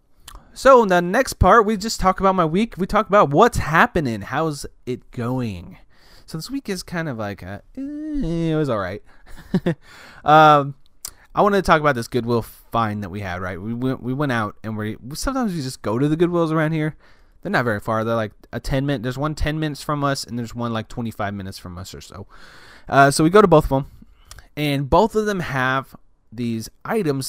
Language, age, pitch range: English, 20-39, 110-155 Hz